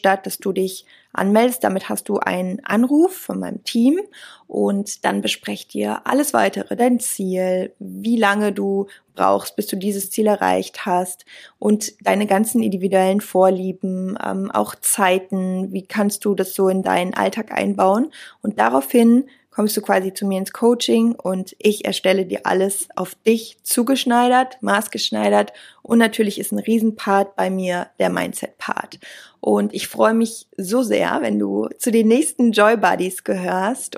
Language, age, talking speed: German, 20-39, 155 wpm